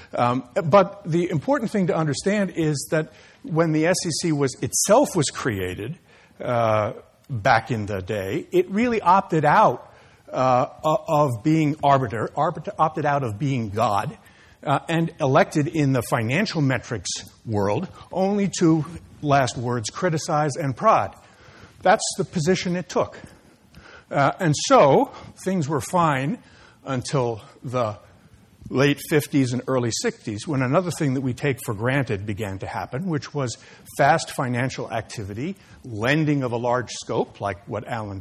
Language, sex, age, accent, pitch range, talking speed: English, male, 60-79, American, 115-165 Hz, 140 wpm